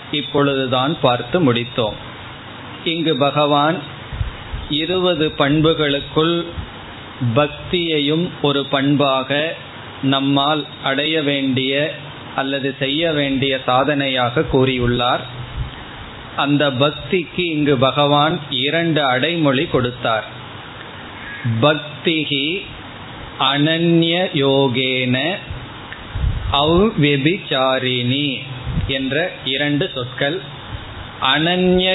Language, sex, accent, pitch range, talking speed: Tamil, male, native, 130-155 Hz, 60 wpm